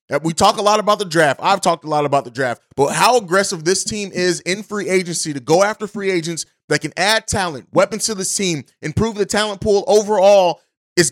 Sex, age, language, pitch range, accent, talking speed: male, 30-49, English, 165-205 Hz, American, 225 wpm